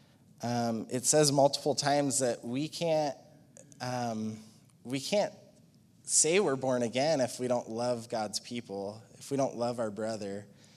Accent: American